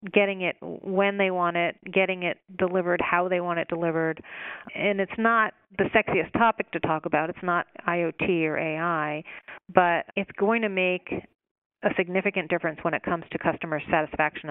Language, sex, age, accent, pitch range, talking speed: English, female, 40-59, American, 165-200 Hz, 175 wpm